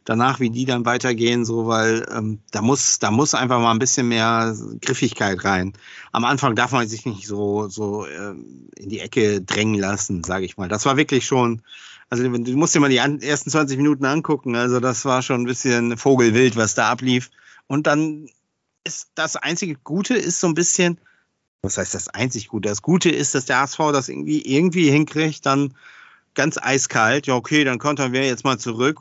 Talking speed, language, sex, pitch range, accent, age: 200 wpm, German, male, 105-135 Hz, German, 50-69